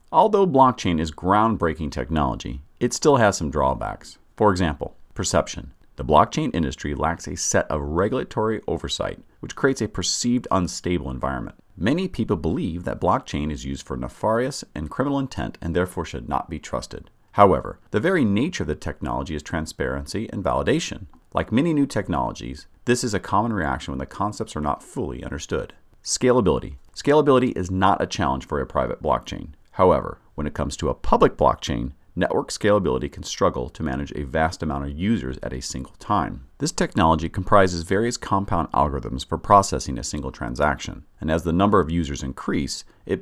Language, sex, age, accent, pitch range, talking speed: English, male, 40-59, American, 75-105 Hz, 175 wpm